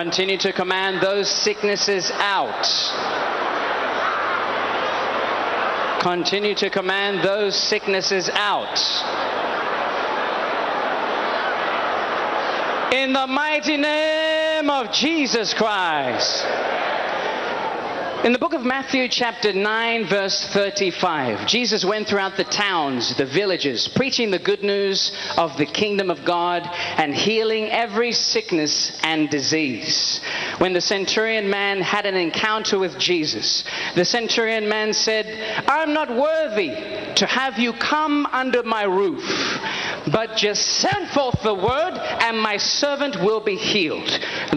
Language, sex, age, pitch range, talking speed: English, male, 40-59, 200-265 Hz, 115 wpm